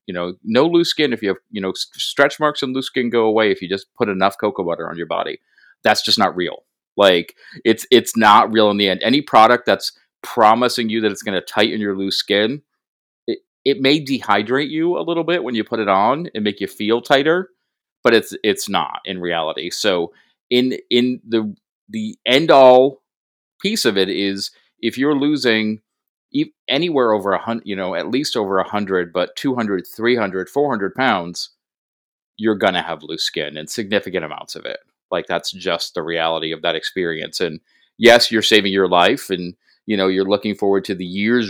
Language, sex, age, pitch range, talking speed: English, male, 30-49, 95-125 Hz, 200 wpm